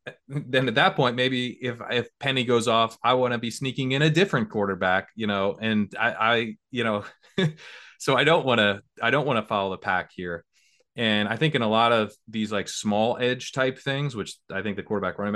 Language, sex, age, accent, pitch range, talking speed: English, male, 20-39, American, 100-125 Hz, 225 wpm